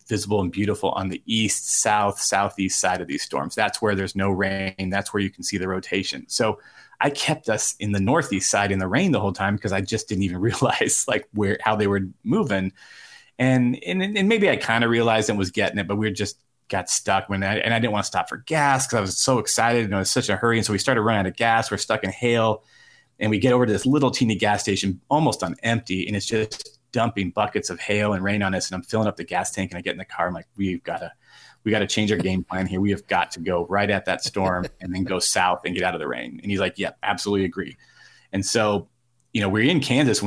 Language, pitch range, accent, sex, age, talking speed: English, 95-110 Hz, American, male, 30-49, 275 wpm